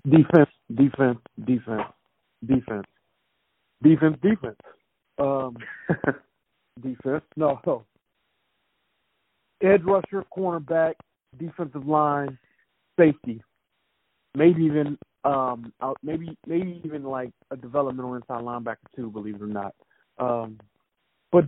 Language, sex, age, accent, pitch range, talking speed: English, male, 50-69, American, 130-185 Hz, 95 wpm